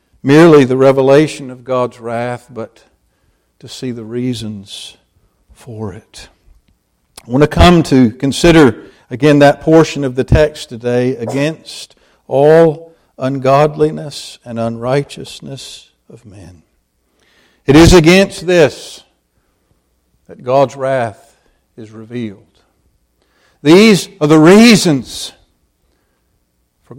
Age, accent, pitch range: 60-79, American, 125-190 Hz